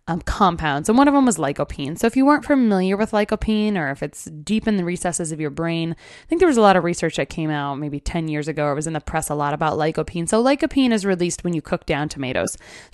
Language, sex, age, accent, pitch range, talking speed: English, female, 20-39, American, 155-210 Hz, 275 wpm